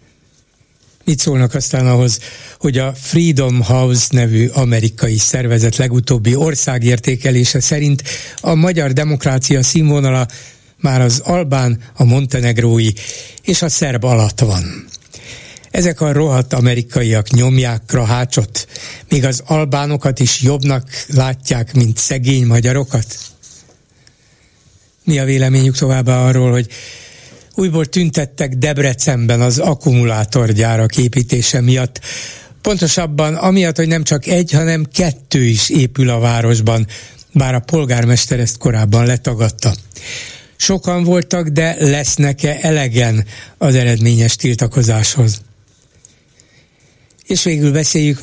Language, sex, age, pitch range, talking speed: Hungarian, male, 60-79, 120-150 Hz, 105 wpm